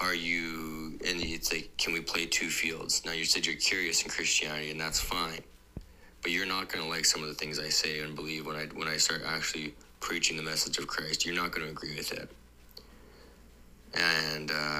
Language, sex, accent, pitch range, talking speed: English, male, American, 75-85 Hz, 215 wpm